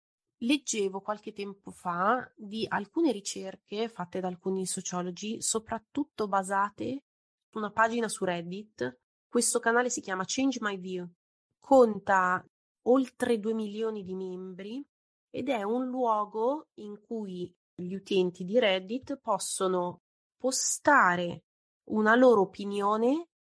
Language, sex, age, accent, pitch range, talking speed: Italian, female, 30-49, native, 190-245 Hz, 120 wpm